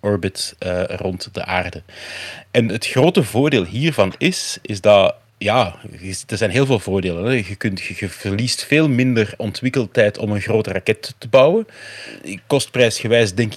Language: Dutch